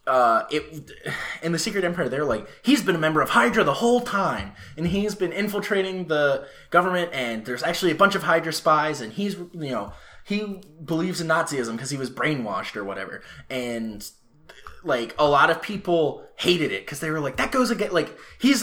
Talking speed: 200 wpm